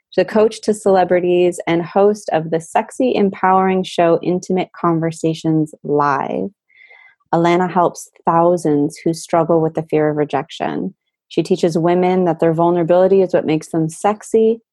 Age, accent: 30-49, American